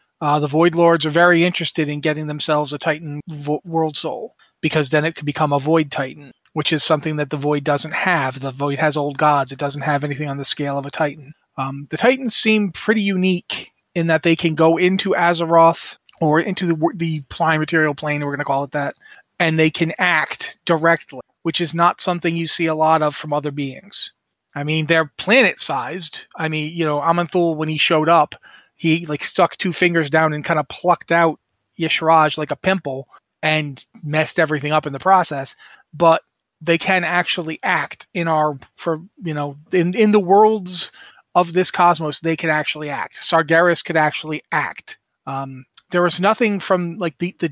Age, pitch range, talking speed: 30-49, 150-175 Hz, 195 wpm